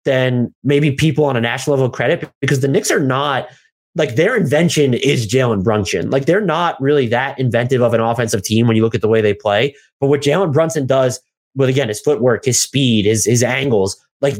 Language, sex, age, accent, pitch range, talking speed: English, male, 20-39, American, 115-150 Hz, 215 wpm